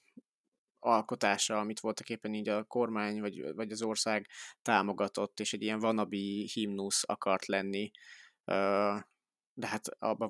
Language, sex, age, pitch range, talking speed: Hungarian, male, 20-39, 100-115 Hz, 130 wpm